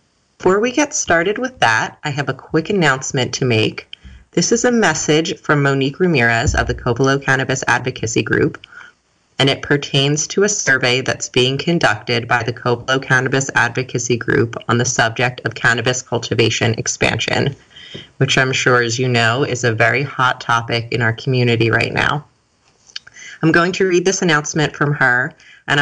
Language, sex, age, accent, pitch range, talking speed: English, female, 30-49, American, 125-150 Hz, 170 wpm